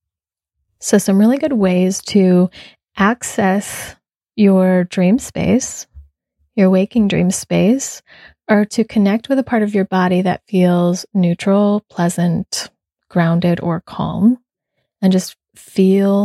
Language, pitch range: English, 175-200 Hz